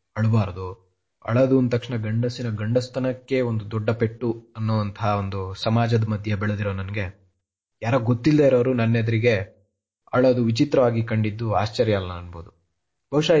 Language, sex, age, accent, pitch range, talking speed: Kannada, male, 30-49, native, 105-125 Hz, 115 wpm